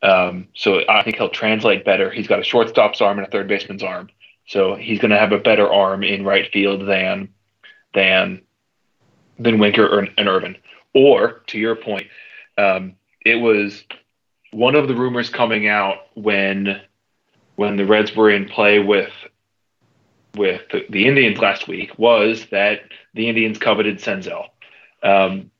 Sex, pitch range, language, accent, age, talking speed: male, 105-125 Hz, English, American, 20-39, 160 wpm